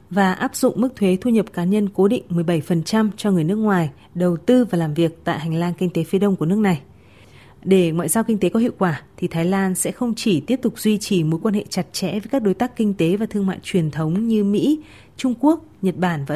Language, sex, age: Vietnamese, female, 20-39